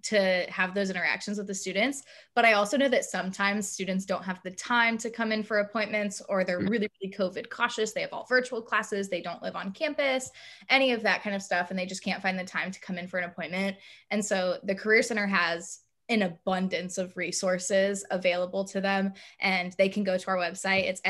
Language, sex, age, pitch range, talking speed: English, female, 20-39, 185-220 Hz, 225 wpm